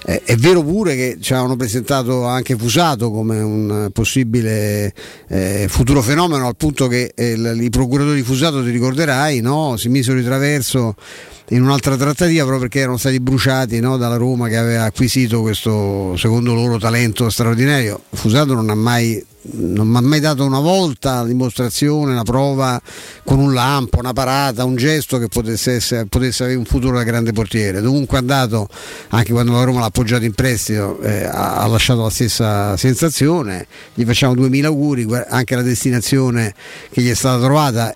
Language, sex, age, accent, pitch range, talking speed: Italian, male, 50-69, native, 110-130 Hz, 175 wpm